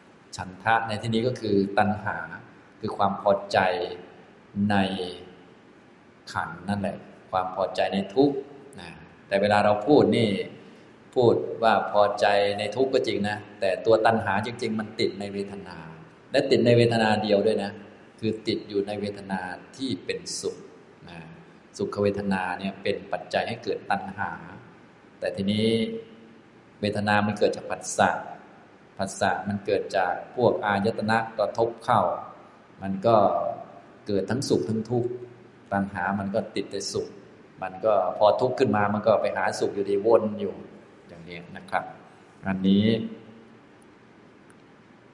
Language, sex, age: Thai, male, 20-39